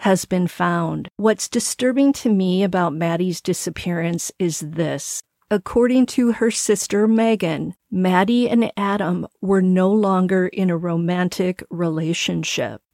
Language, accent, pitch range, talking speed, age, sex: English, American, 180-210 Hz, 125 wpm, 40-59, female